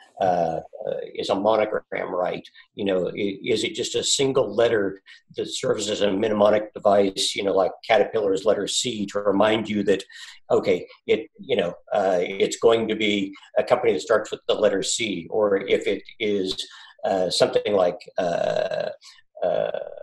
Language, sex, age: English, male, 50-69